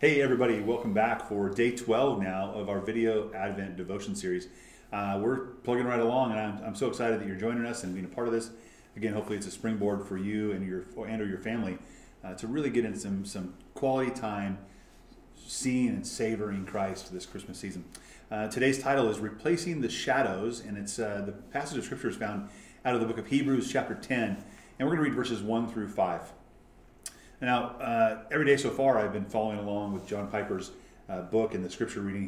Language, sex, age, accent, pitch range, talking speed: English, male, 30-49, American, 100-125 Hz, 215 wpm